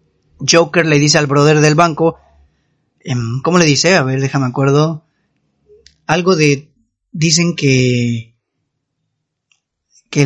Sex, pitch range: male, 145-185 Hz